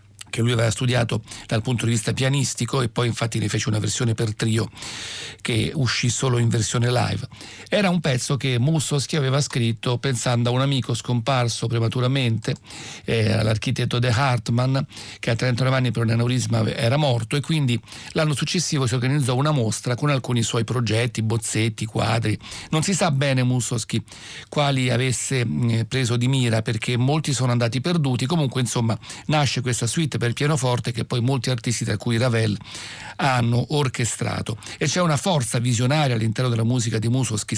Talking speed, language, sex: 170 wpm, Italian, male